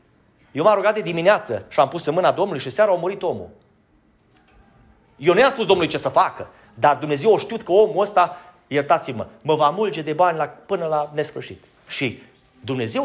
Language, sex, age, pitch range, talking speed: Romanian, male, 30-49, 140-200 Hz, 200 wpm